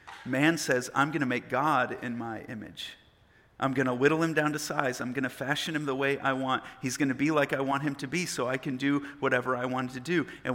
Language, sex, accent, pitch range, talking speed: English, male, American, 145-230 Hz, 265 wpm